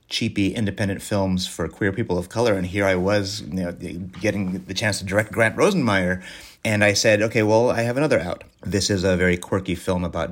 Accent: American